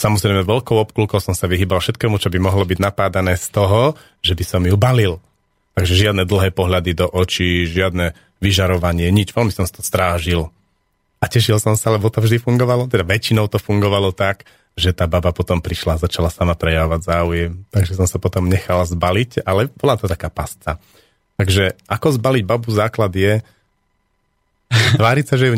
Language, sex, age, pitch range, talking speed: Slovak, male, 40-59, 90-110 Hz, 180 wpm